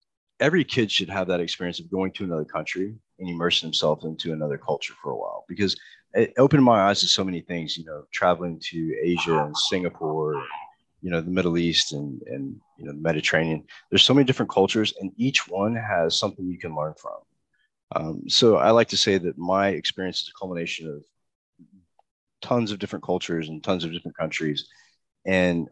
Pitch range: 85-100 Hz